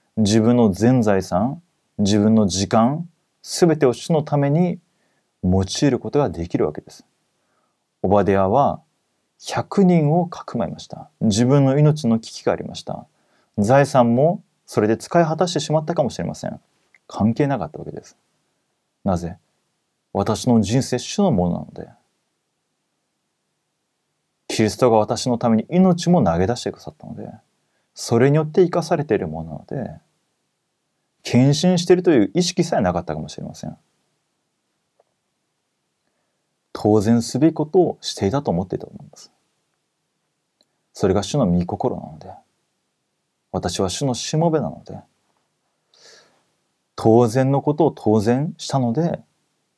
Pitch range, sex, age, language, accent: 105-155 Hz, male, 30-49, Korean, Japanese